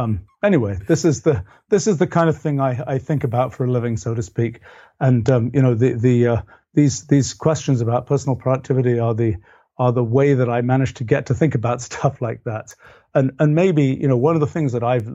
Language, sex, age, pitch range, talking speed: English, male, 40-59, 115-140 Hz, 240 wpm